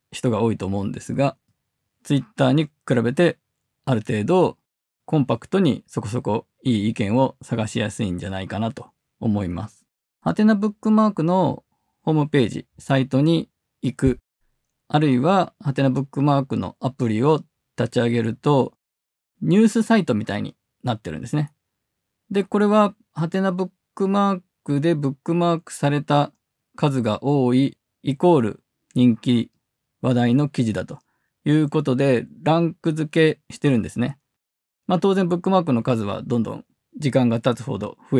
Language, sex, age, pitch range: Japanese, male, 20-39, 120-155 Hz